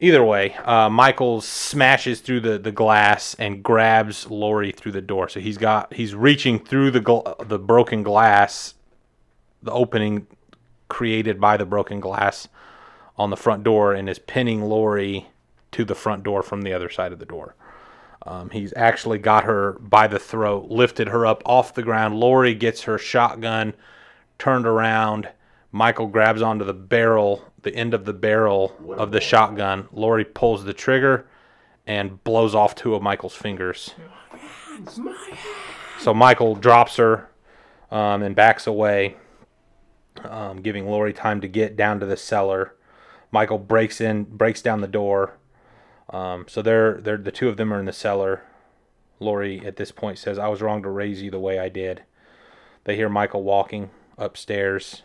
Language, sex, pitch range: English, male, 100-115 Hz